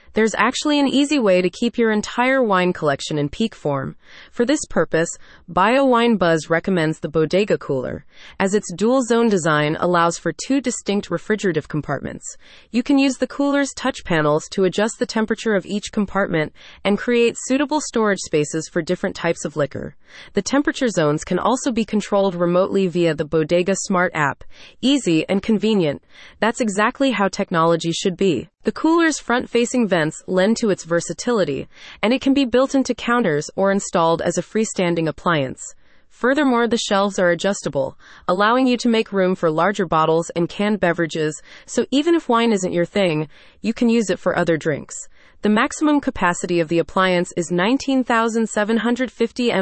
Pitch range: 170-235 Hz